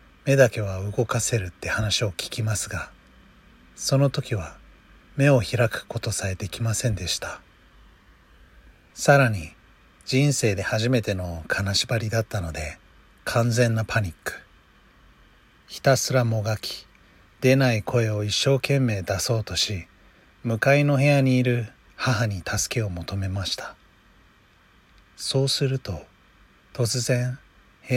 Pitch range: 90-125 Hz